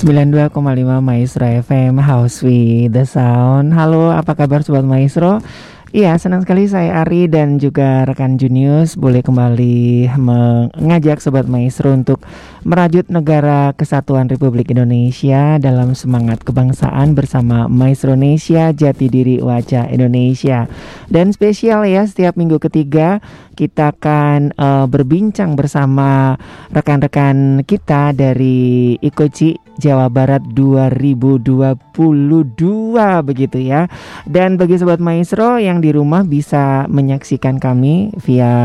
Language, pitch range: Indonesian, 130-165 Hz